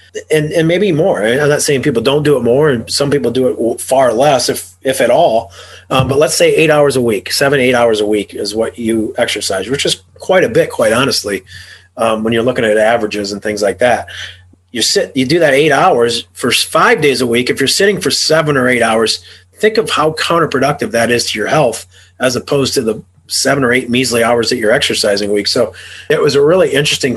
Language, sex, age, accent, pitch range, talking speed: English, male, 30-49, American, 110-145 Hz, 235 wpm